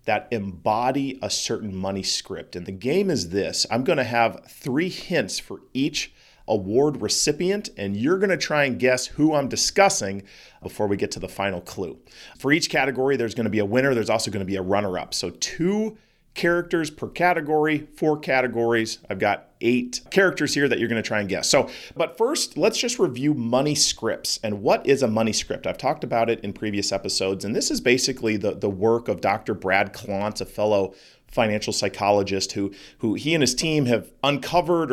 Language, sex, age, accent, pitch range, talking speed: English, male, 40-59, American, 105-150 Hz, 205 wpm